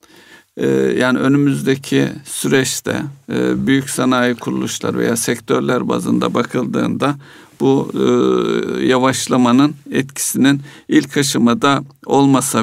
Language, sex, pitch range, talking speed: Turkish, male, 115-135 Hz, 75 wpm